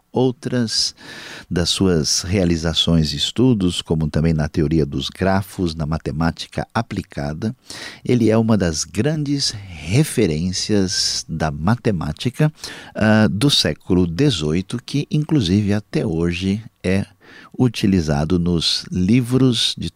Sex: male